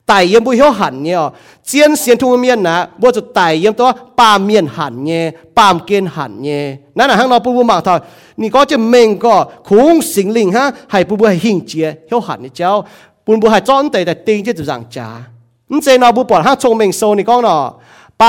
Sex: male